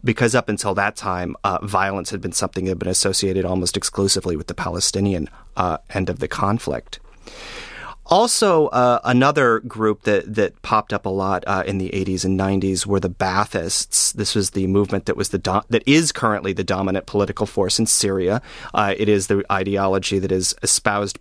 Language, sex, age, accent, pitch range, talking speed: English, male, 30-49, American, 95-110 Hz, 190 wpm